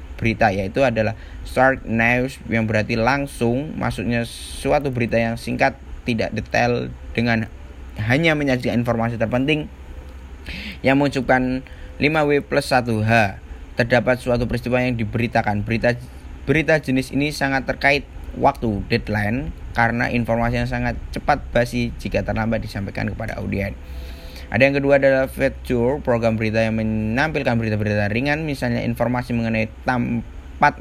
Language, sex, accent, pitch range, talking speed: Indonesian, male, native, 110-135 Hz, 125 wpm